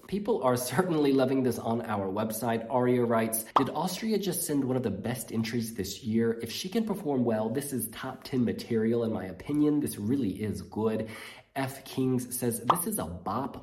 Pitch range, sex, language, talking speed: 110-140 Hz, male, English, 200 wpm